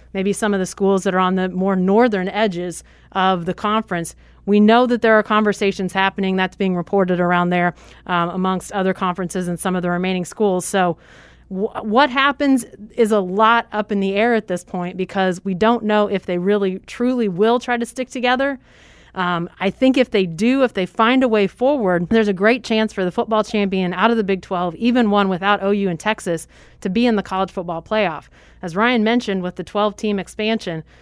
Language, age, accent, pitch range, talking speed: English, 30-49, American, 185-225 Hz, 210 wpm